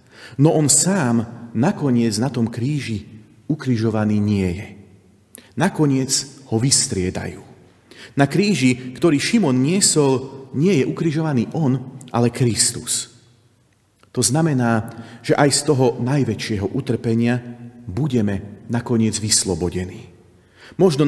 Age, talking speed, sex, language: 40-59, 100 wpm, male, Slovak